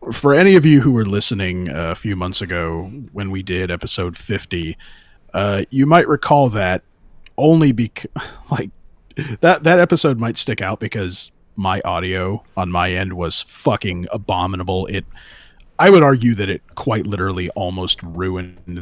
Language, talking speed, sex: English, 155 wpm, male